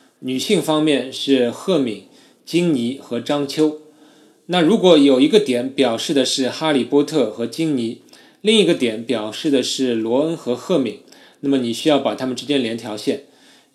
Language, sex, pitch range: Chinese, male, 120-160 Hz